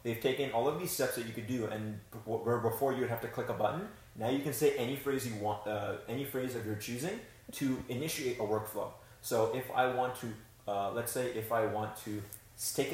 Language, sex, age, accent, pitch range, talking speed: English, male, 30-49, American, 110-125 Hz, 235 wpm